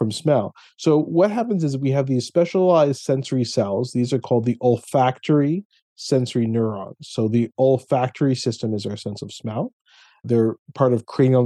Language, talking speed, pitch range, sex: English, 170 wpm, 115-140 Hz, male